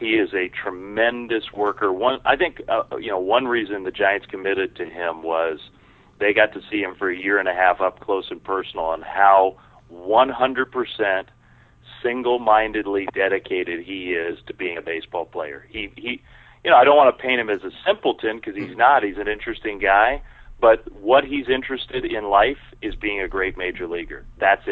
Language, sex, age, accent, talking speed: English, male, 40-59, American, 190 wpm